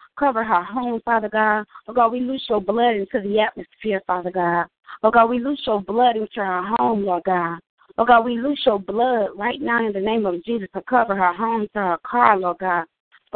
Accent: American